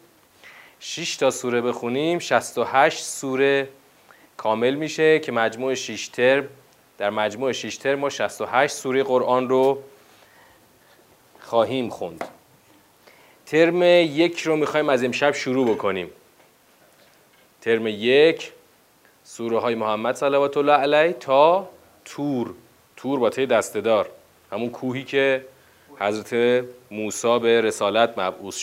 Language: Persian